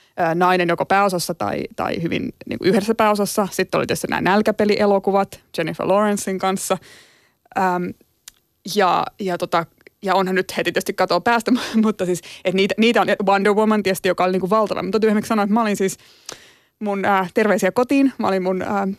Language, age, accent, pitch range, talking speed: Finnish, 20-39, native, 185-220 Hz, 180 wpm